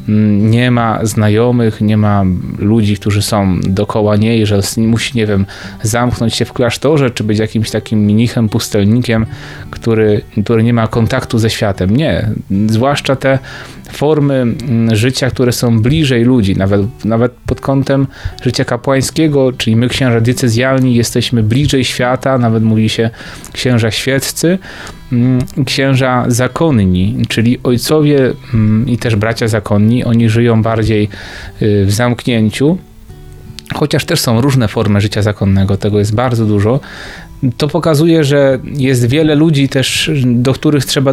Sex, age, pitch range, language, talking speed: male, 30-49, 105-130 Hz, Polish, 135 wpm